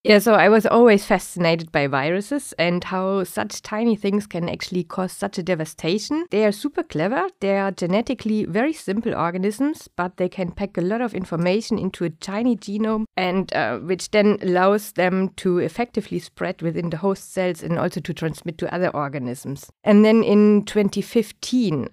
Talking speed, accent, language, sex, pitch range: 180 wpm, German, English, female, 165-210 Hz